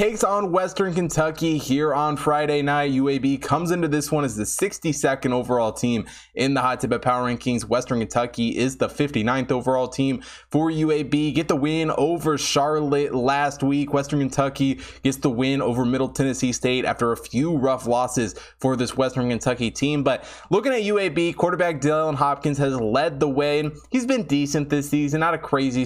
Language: English